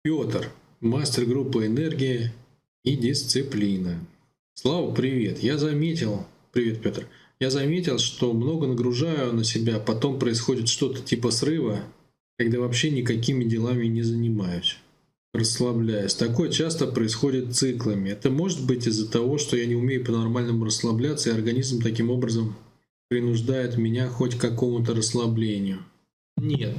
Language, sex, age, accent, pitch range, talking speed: Russian, male, 20-39, native, 115-145 Hz, 130 wpm